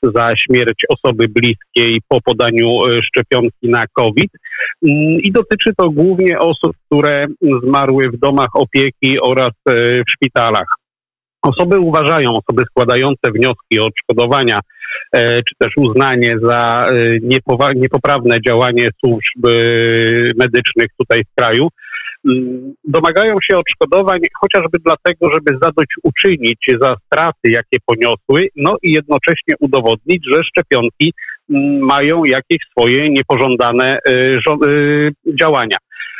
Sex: male